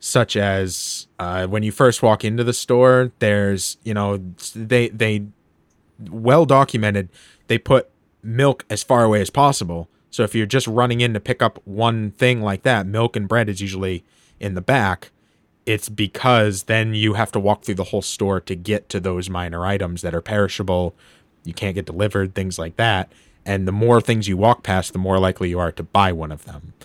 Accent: American